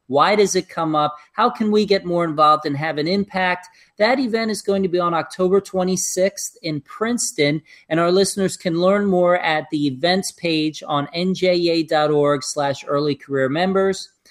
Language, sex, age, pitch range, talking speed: English, male, 40-59, 165-205 Hz, 170 wpm